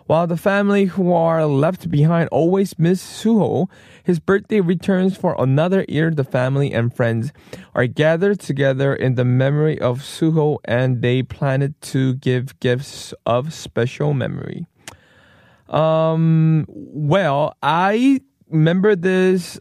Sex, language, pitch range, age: male, Korean, 135-175 Hz, 20-39